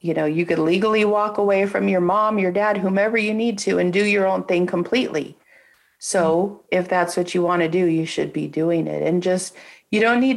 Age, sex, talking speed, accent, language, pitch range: 40-59, female, 230 wpm, American, English, 160-200 Hz